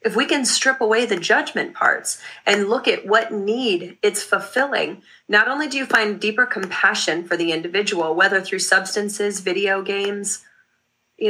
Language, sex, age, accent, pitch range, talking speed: English, female, 30-49, American, 190-235 Hz, 165 wpm